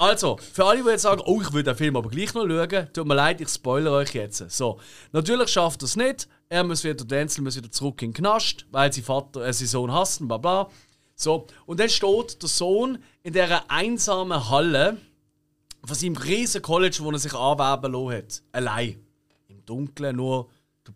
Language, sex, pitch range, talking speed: German, male, 130-195 Hz, 200 wpm